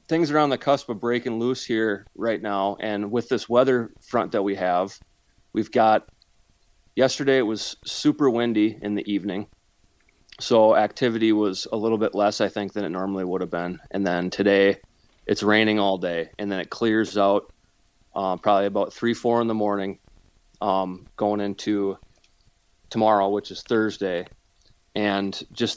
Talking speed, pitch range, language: 170 wpm, 100-115 Hz, English